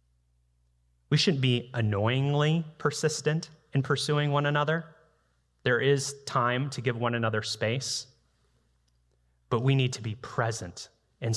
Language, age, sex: English, 30-49, male